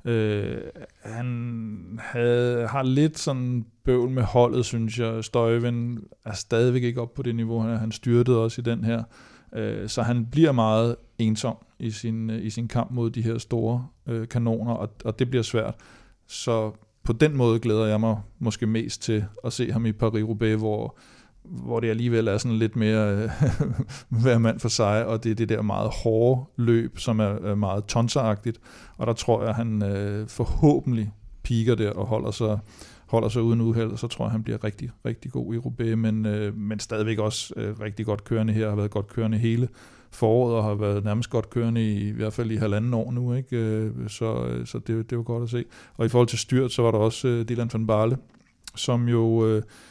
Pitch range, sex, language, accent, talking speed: 110-120 Hz, male, Danish, native, 210 wpm